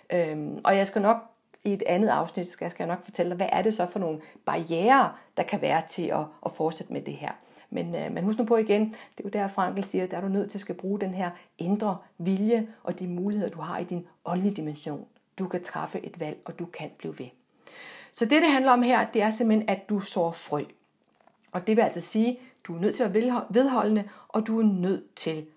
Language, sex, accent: Danish, female, native